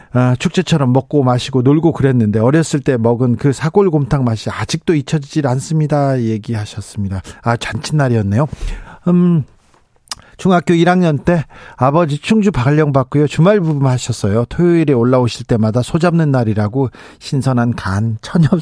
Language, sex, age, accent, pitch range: Korean, male, 40-59, native, 120-165 Hz